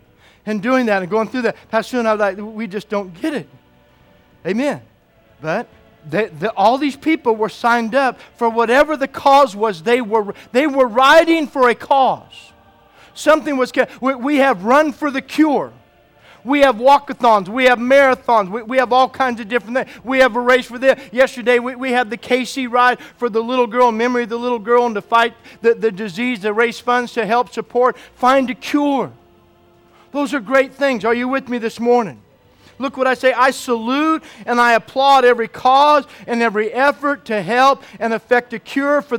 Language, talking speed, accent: English, 205 wpm, American